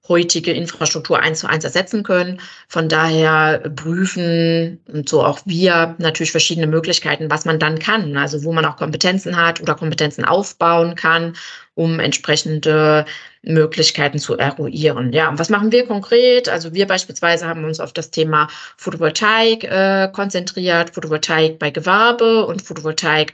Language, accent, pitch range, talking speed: German, German, 155-180 Hz, 145 wpm